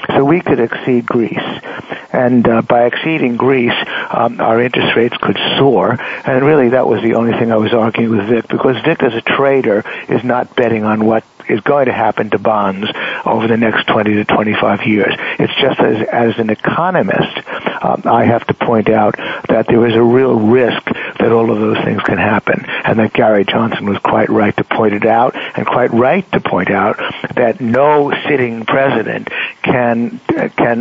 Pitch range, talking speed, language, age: 105-120 Hz, 195 wpm, English, 60-79